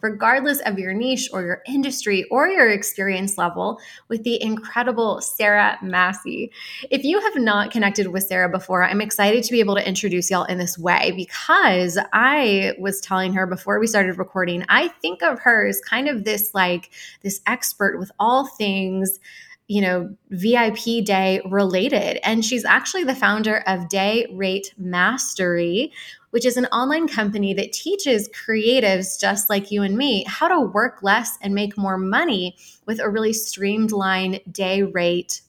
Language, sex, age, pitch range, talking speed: English, female, 20-39, 190-230 Hz, 165 wpm